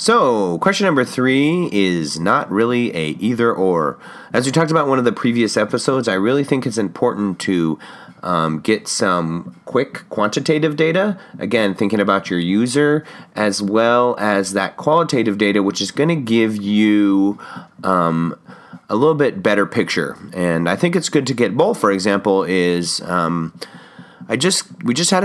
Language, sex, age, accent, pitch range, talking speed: English, male, 30-49, American, 90-125 Hz, 170 wpm